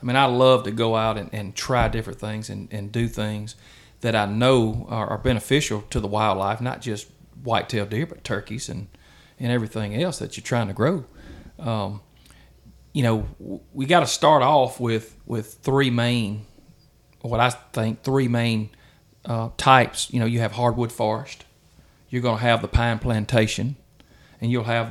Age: 40-59